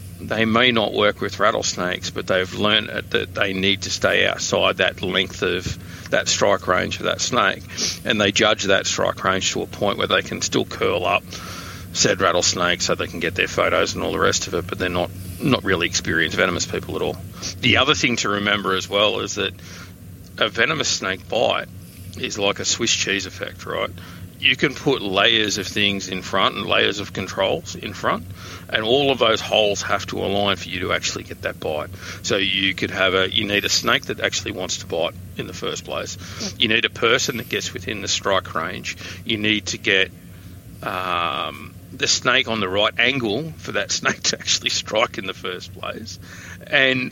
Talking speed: 205 wpm